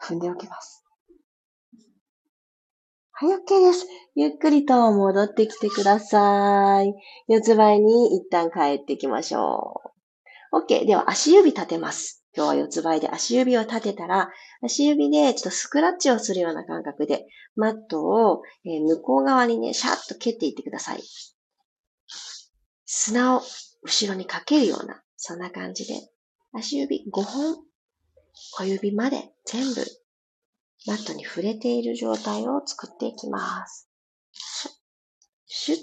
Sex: female